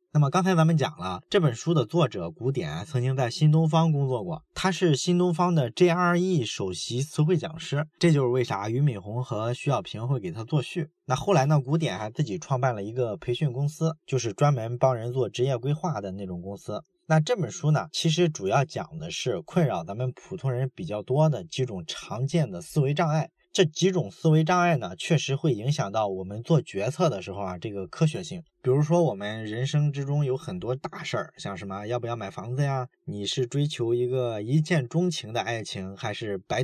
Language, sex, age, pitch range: Chinese, male, 20-39, 115-165 Hz